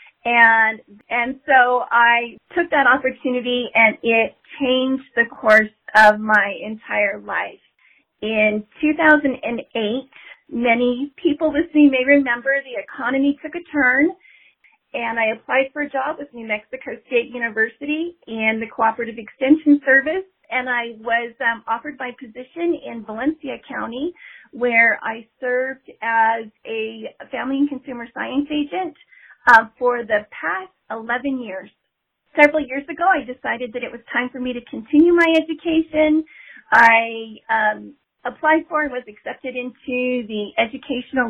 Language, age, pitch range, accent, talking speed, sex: English, 40-59, 230-285 Hz, American, 140 wpm, female